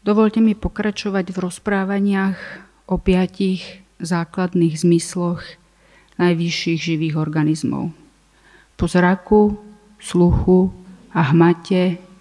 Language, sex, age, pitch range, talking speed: Slovak, female, 40-59, 165-185 Hz, 85 wpm